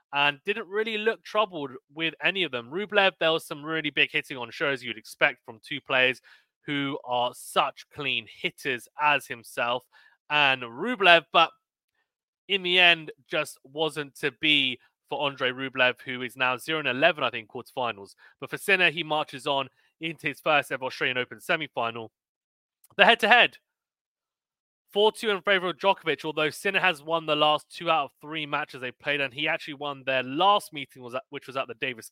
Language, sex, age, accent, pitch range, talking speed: English, male, 30-49, British, 130-165 Hz, 180 wpm